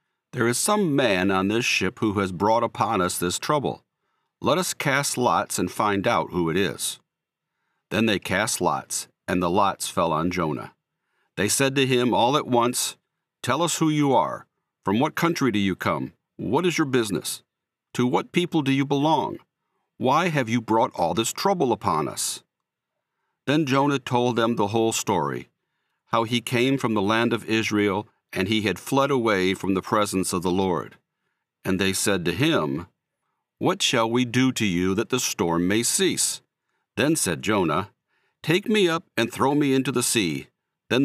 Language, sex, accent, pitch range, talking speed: English, male, American, 105-135 Hz, 185 wpm